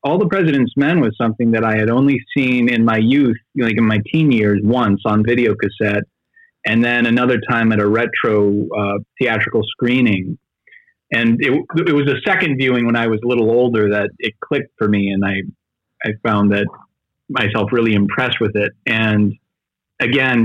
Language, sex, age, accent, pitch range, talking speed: English, male, 30-49, American, 105-125 Hz, 185 wpm